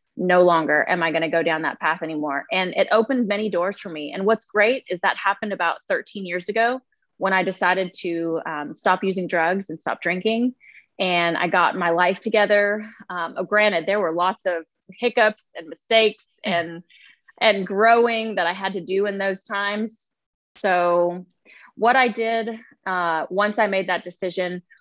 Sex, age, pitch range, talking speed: female, 20-39, 180-225 Hz, 180 wpm